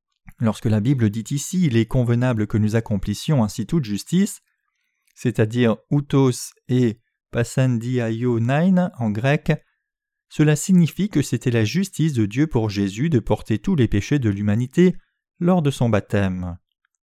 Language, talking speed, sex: French, 160 wpm, male